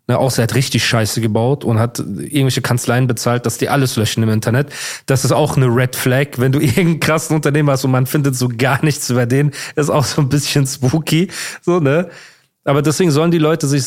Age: 40-59